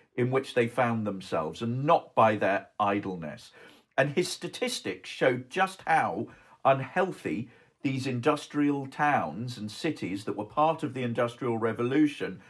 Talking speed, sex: 140 wpm, male